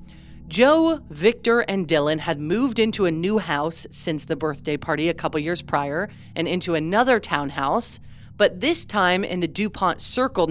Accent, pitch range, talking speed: American, 155-205 Hz, 165 wpm